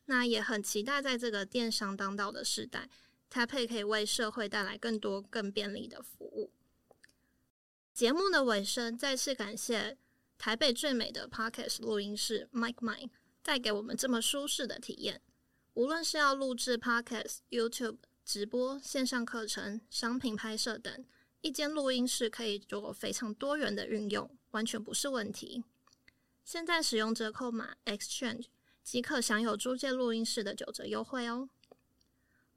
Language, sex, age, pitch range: Chinese, female, 20-39, 215-260 Hz